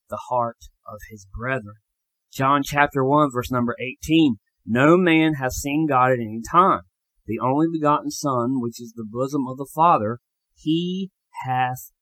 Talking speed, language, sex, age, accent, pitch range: 160 wpm, English, male, 30-49, American, 115-150 Hz